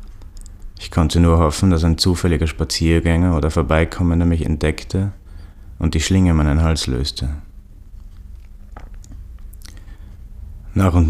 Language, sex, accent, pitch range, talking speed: German, male, German, 80-90 Hz, 110 wpm